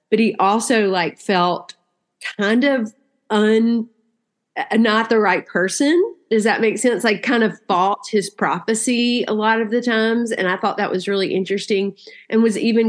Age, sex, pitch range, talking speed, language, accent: 30-49, female, 175-220 Hz, 170 wpm, English, American